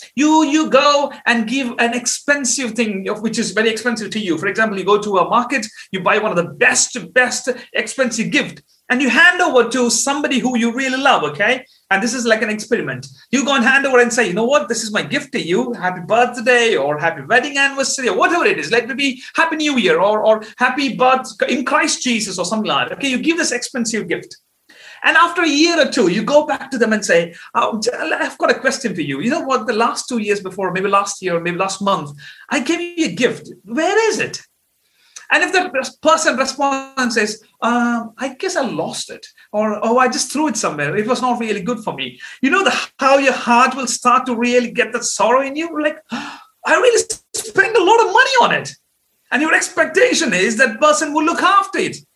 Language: Malayalam